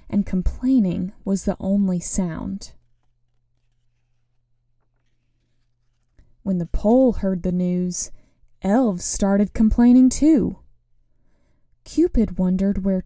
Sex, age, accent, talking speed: female, 20-39, American, 85 wpm